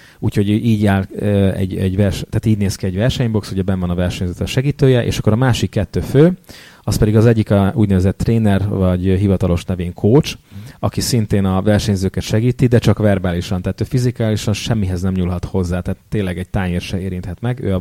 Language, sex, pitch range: English, male, 90-110 Hz